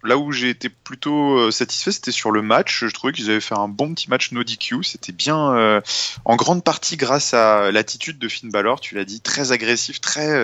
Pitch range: 90-125 Hz